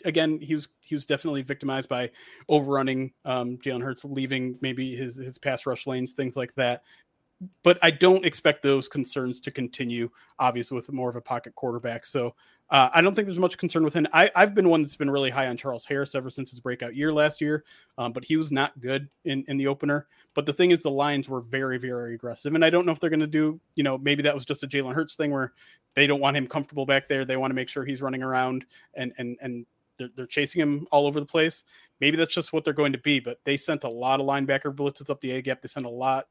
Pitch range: 130-155 Hz